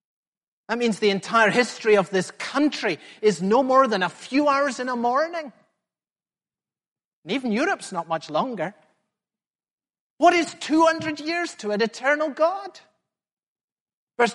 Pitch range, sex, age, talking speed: 195-280 Hz, male, 40-59, 140 wpm